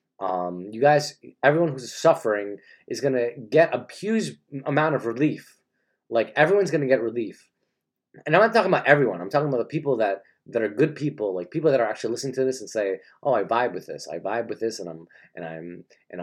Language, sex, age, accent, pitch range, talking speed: English, male, 20-39, American, 110-145 Hz, 225 wpm